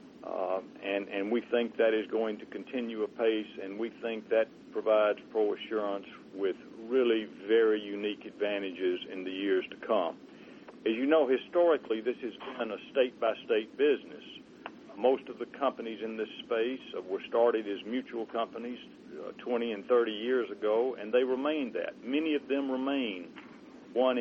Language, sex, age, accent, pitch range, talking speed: English, male, 50-69, American, 110-135 Hz, 165 wpm